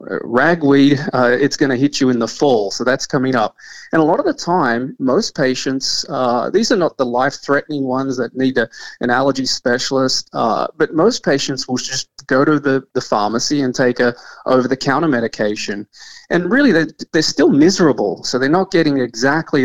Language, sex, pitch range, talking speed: English, male, 120-150 Hz, 200 wpm